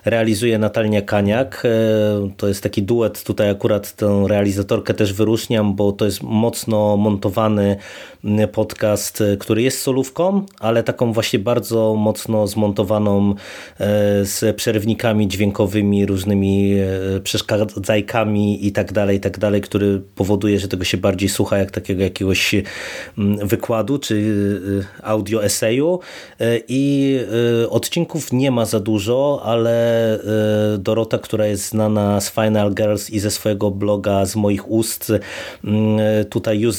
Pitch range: 100-115 Hz